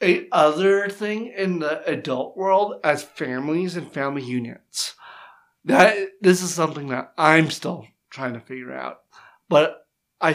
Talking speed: 145 wpm